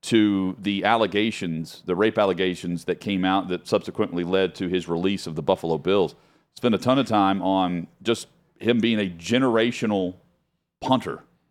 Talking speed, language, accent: 165 wpm, English, American